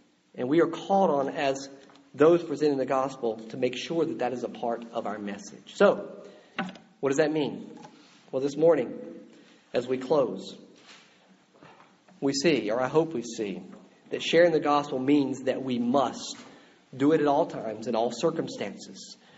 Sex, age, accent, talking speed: male, 50-69, American, 170 wpm